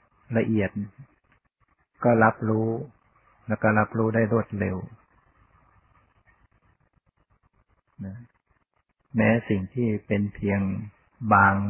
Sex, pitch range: male, 100-115 Hz